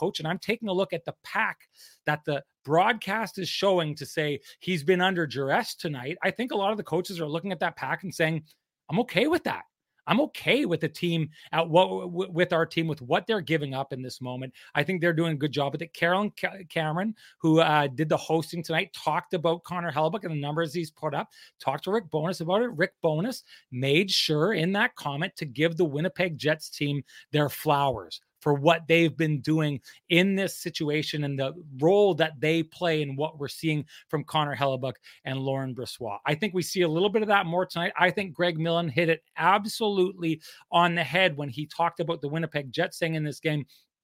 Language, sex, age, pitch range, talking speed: English, male, 30-49, 150-185 Hz, 220 wpm